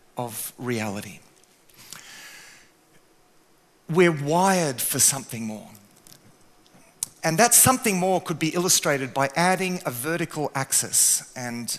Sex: male